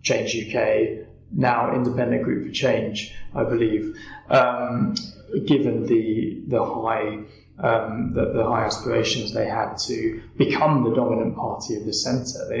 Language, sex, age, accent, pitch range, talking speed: English, male, 20-39, British, 115-135 Hz, 145 wpm